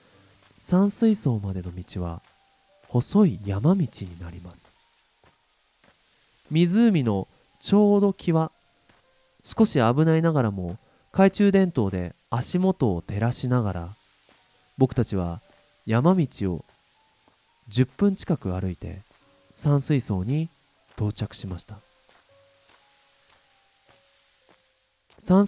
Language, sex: Japanese, male